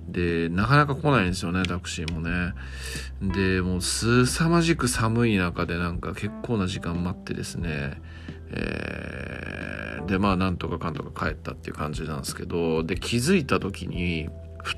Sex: male